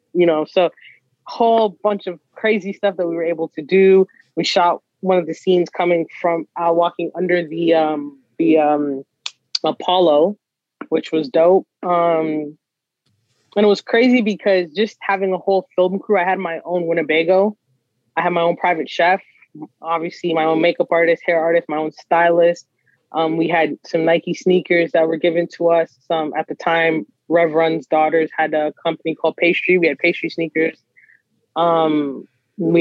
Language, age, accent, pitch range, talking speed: English, 20-39, American, 155-180 Hz, 175 wpm